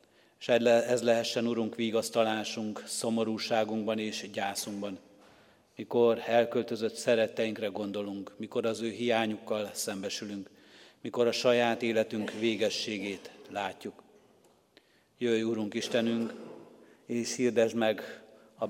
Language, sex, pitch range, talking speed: Hungarian, male, 110-120 Hz, 95 wpm